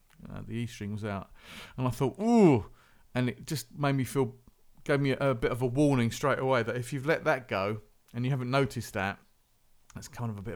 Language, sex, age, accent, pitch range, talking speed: English, male, 40-59, British, 110-140 Hz, 235 wpm